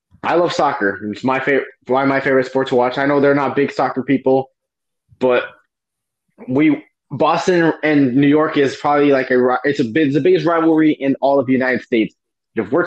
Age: 20-39